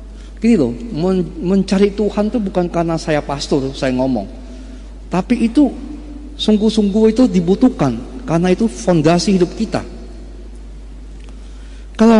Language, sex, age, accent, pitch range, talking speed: Indonesian, male, 40-59, native, 145-225 Hz, 110 wpm